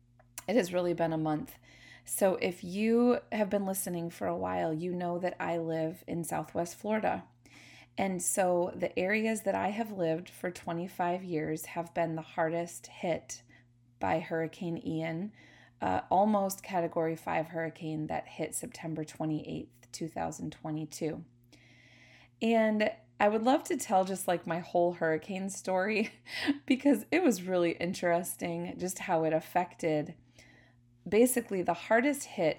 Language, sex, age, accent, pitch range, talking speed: English, female, 20-39, American, 155-190 Hz, 140 wpm